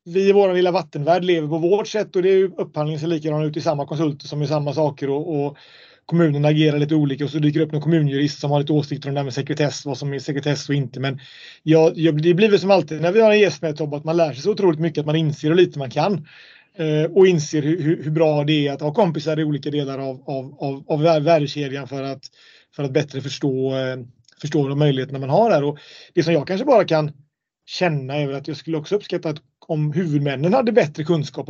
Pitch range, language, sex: 140-165 Hz, Swedish, male